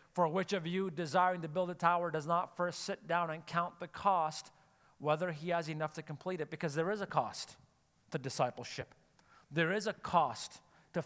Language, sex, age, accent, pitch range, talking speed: English, male, 40-59, American, 160-210 Hz, 200 wpm